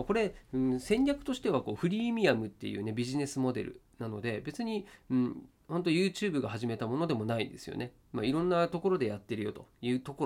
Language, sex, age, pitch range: Japanese, male, 40-59, 120-195 Hz